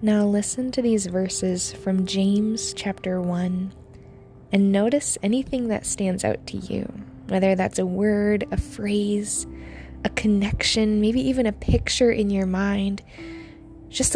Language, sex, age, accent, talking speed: English, female, 20-39, American, 140 wpm